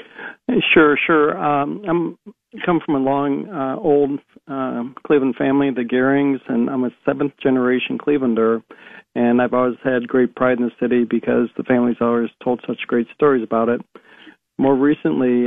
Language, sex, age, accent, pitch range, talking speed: English, male, 50-69, American, 120-135 Hz, 160 wpm